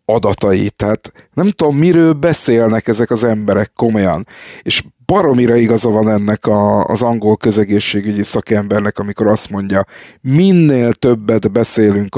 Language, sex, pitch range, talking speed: Hungarian, male, 105-125 Hz, 125 wpm